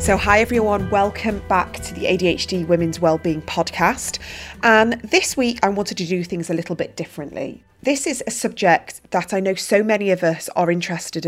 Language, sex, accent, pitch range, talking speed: English, female, British, 165-195 Hz, 190 wpm